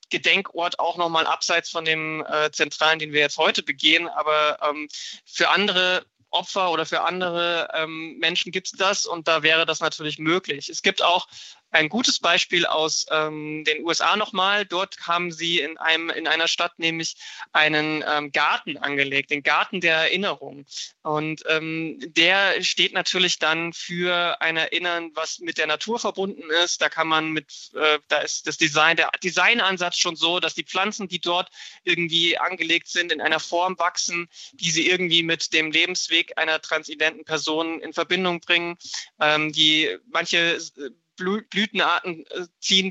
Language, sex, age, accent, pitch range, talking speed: German, male, 20-39, German, 155-180 Hz, 165 wpm